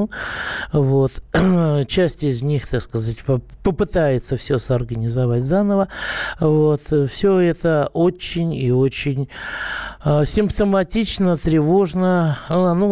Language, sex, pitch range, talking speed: Russian, male, 120-160 Hz, 90 wpm